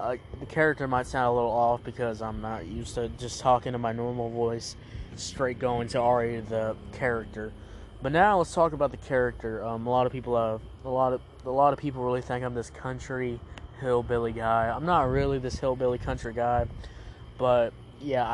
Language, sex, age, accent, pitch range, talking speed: English, male, 20-39, American, 115-140 Hz, 195 wpm